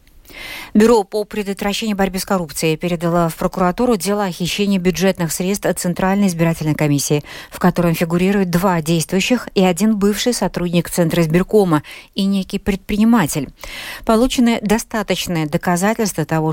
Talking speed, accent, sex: 130 wpm, native, female